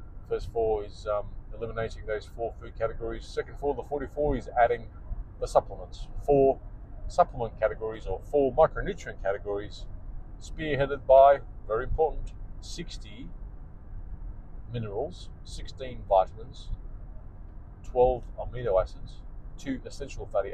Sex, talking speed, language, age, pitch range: male, 115 wpm, English, 40-59, 95-115 Hz